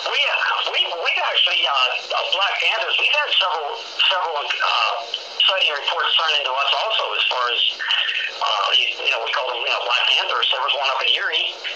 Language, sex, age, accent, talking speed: English, male, 50-69, American, 195 wpm